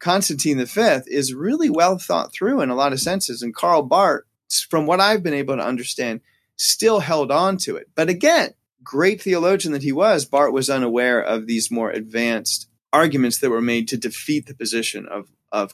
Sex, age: male, 30-49